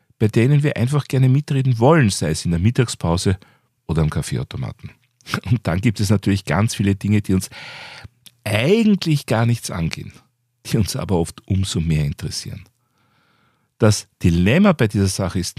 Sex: male